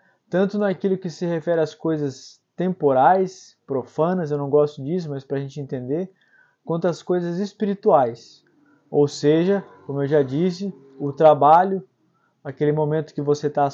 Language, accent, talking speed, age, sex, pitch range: Portuguese, Brazilian, 155 wpm, 20-39, male, 145-175 Hz